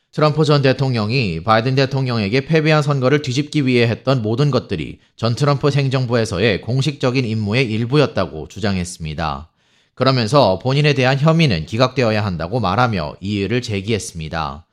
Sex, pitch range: male, 105-135 Hz